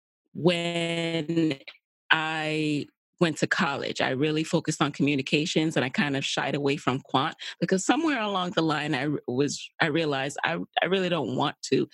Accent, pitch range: American, 145-180 Hz